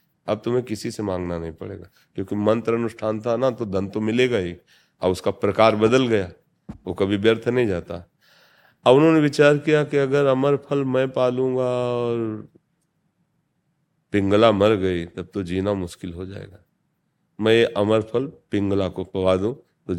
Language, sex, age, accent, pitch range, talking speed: Hindi, male, 40-59, native, 95-125 Hz, 165 wpm